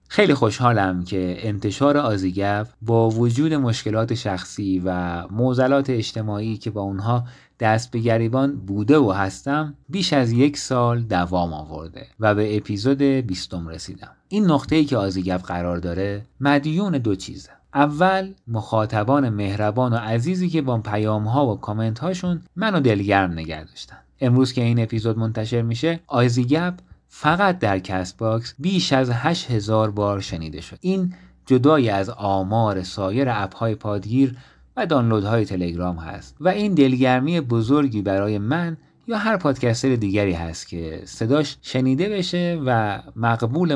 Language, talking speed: Persian, 135 wpm